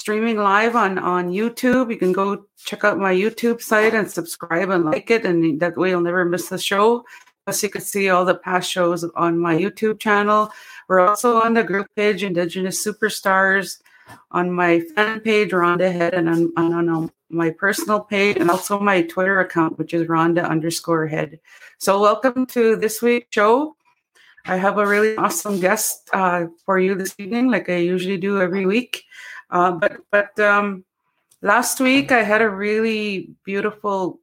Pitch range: 175-210 Hz